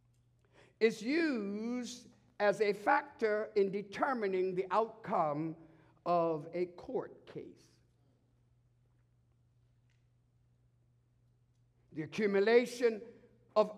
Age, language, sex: 60-79, English, male